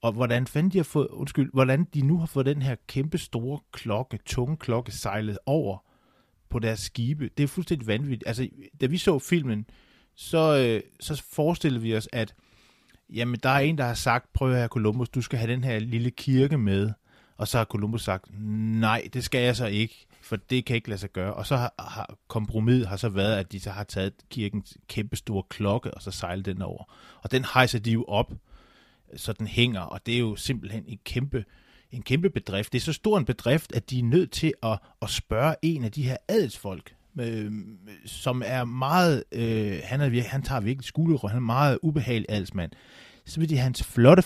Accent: native